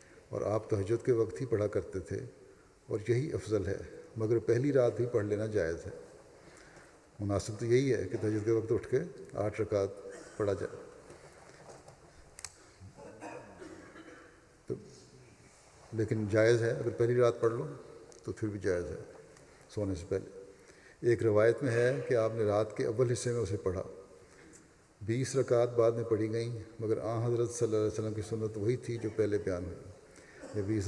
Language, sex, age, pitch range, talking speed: Urdu, male, 50-69, 110-120 Hz, 170 wpm